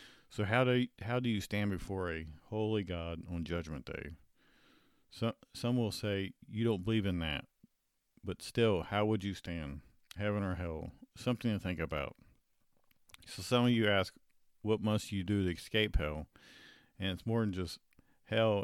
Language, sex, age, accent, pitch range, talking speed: English, male, 50-69, American, 90-115 Hz, 175 wpm